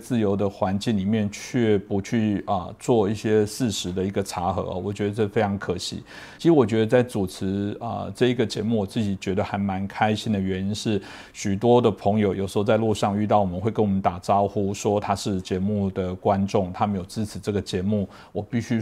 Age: 50-69